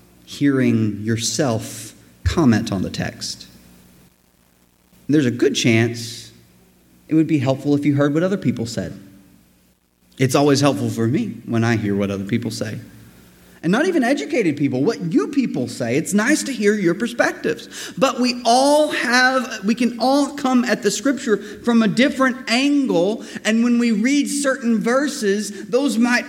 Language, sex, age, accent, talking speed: English, male, 30-49, American, 160 wpm